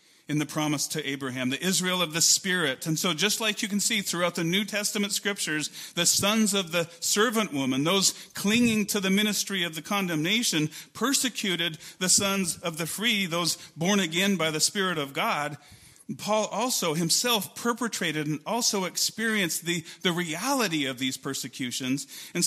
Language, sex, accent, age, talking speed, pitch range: English, male, American, 40-59, 170 wpm, 150-205 Hz